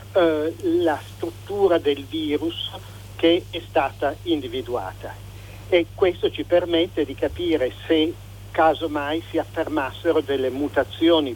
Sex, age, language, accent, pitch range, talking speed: male, 50-69, Italian, native, 105-165 Hz, 105 wpm